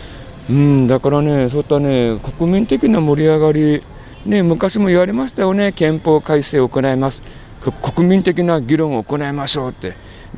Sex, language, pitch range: male, Japanese, 120-160 Hz